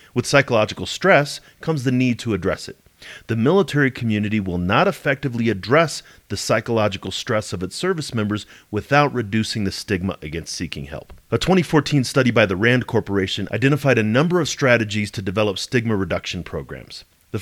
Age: 30-49